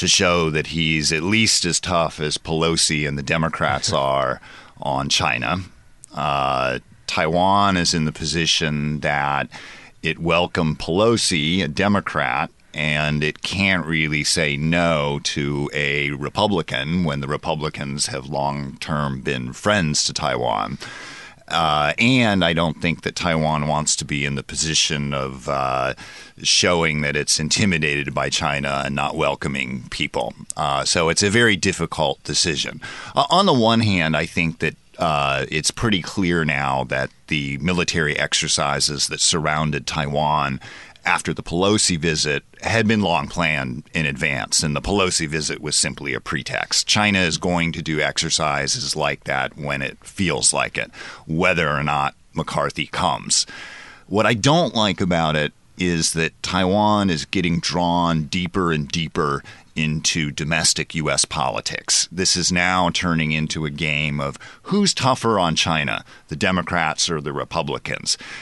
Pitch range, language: 75-90 Hz, English